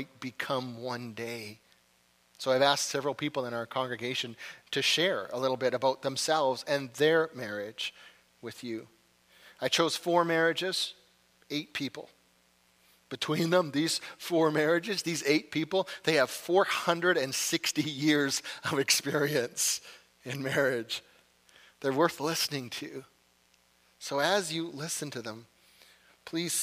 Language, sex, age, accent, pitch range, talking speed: English, male, 40-59, American, 120-160 Hz, 125 wpm